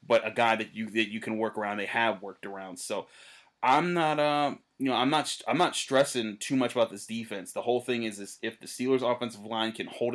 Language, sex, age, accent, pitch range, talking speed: English, male, 20-39, American, 105-115 Hz, 250 wpm